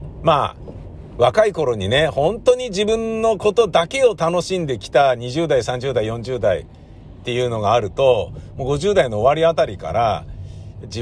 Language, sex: Japanese, male